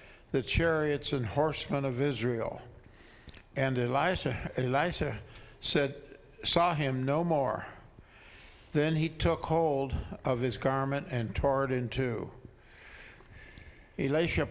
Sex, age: male, 60-79